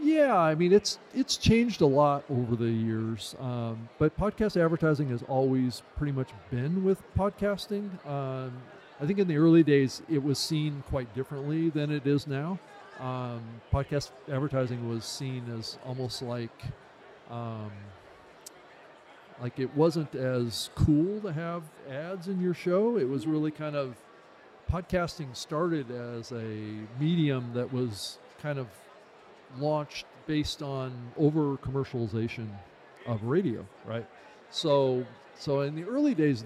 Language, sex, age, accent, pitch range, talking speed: English, male, 40-59, American, 125-165 Hz, 140 wpm